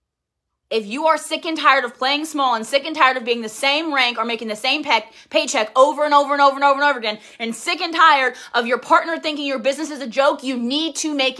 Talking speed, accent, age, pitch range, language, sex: 265 wpm, American, 20-39, 225-290 Hz, English, female